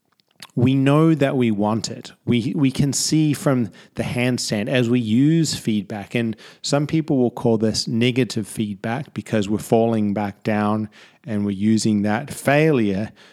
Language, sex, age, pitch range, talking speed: English, male, 30-49, 110-135 Hz, 160 wpm